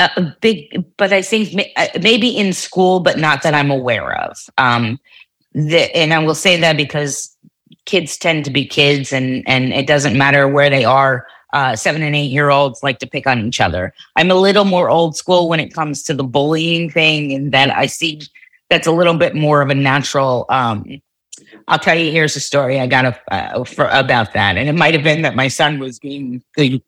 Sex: female